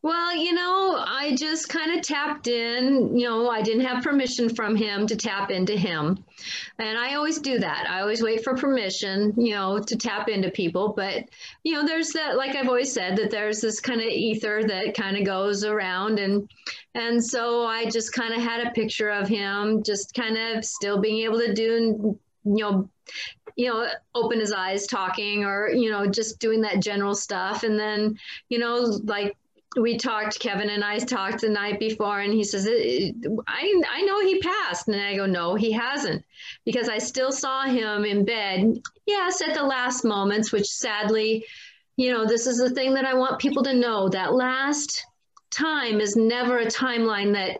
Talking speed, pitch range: 195 wpm, 205-250 Hz